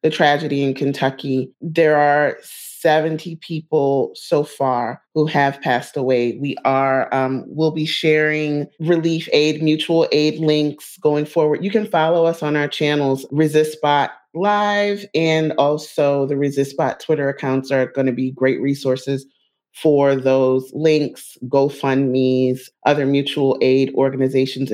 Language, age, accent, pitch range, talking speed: English, 30-49, American, 130-150 Hz, 140 wpm